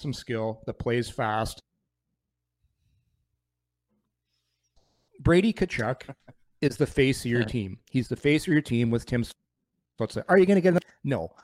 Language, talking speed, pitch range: English, 150 wpm, 110-140 Hz